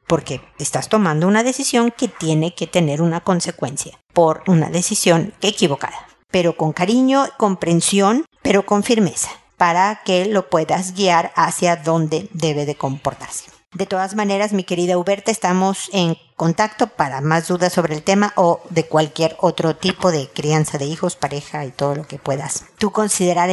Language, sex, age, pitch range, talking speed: Spanish, female, 50-69, 165-210 Hz, 165 wpm